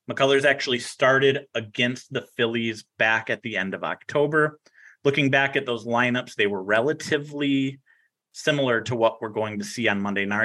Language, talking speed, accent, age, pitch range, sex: English, 165 wpm, American, 30-49, 110-135 Hz, male